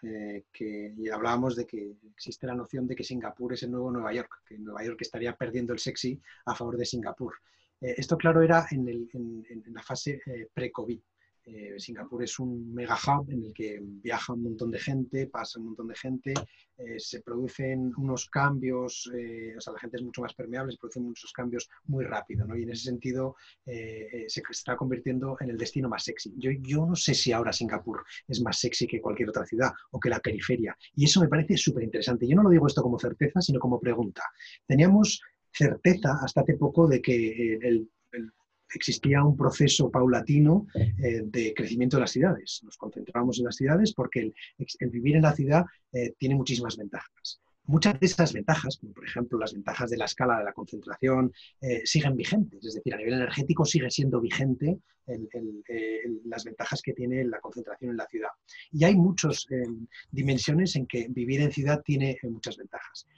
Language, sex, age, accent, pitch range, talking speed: Spanish, male, 30-49, Spanish, 120-145 Hz, 200 wpm